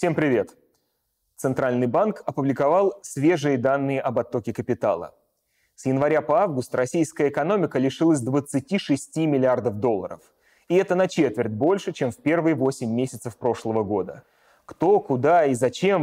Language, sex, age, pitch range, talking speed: Russian, male, 30-49, 130-160 Hz, 135 wpm